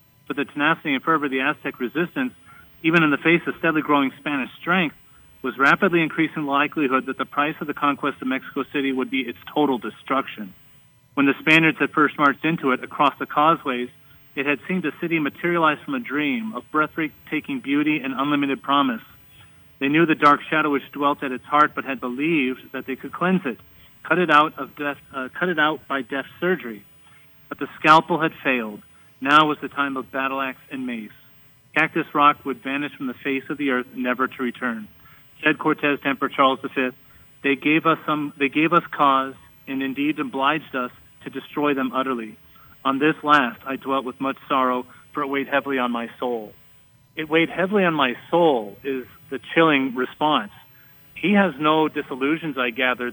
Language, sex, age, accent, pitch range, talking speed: English, male, 40-59, American, 130-155 Hz, 190 wpm